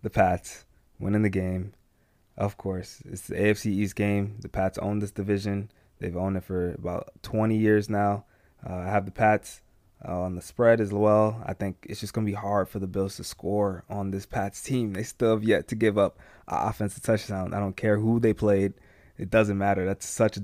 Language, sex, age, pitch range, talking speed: English, male, 20-39, 95-105 Hz, 220 wpm